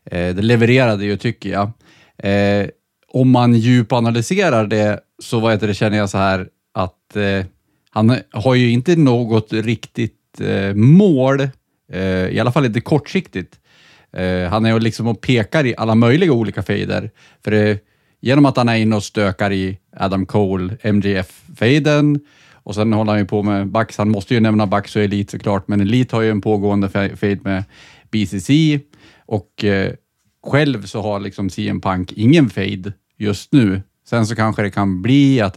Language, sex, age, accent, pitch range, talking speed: Swedish, male, 30-49, Norwegian, 100-120 Hz, 180 wpm